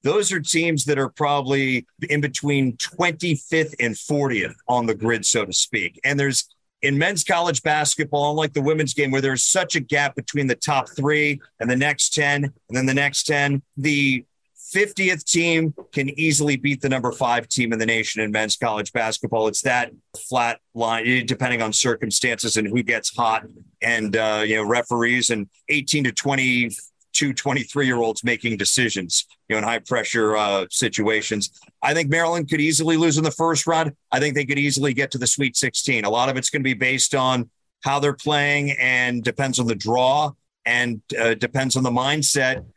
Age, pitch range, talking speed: 40-59, 120-145 Hz, 195 wpm